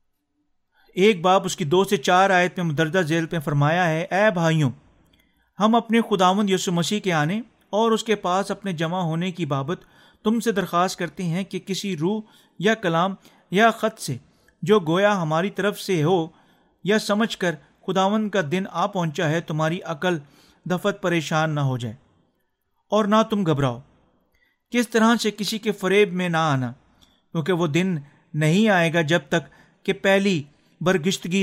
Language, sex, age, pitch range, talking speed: Urdu, male, 40-59, 160-200 Hz, 175 wpm